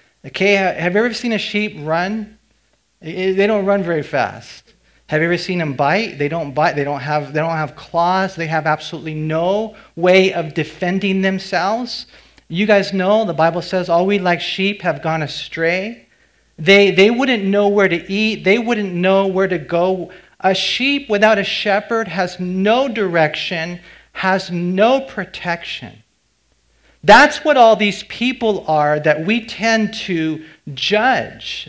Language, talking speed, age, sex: English, 160 wpm, 40-59, male